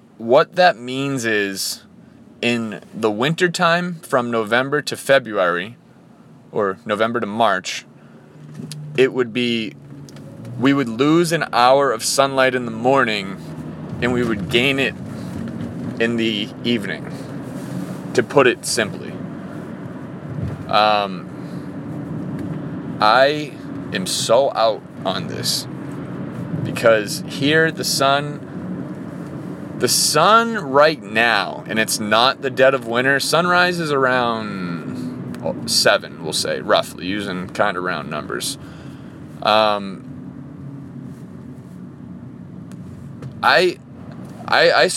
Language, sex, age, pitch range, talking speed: English, male, 30-49, 115-140 Hz, 105 wpm